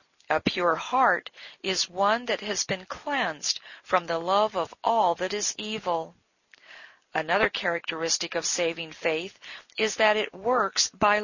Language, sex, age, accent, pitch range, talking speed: English, female, 50-69, American, 170-230 Hz, 145 wpm